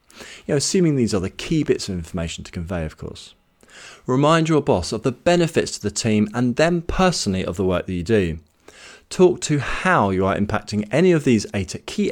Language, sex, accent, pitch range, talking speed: English, male, British, 95-145 Hz, 205 wpm